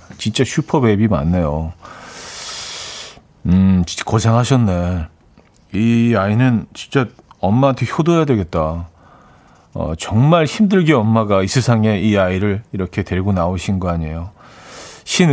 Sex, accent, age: male, native, 40-59